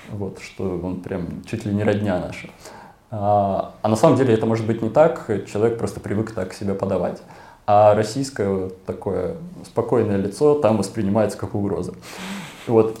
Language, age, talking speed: Russian, 20-39, 165 wpm